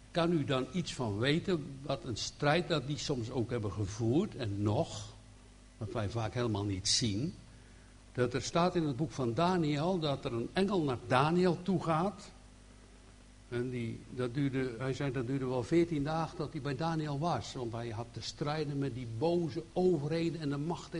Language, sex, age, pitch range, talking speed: Dutch, male, 60-79, 115-165 Hz, 185 wpm